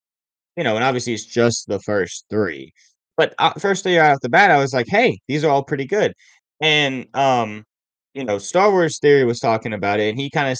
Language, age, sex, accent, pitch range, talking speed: English, 20-39, male, American, 105-135 Hz, 230 wpm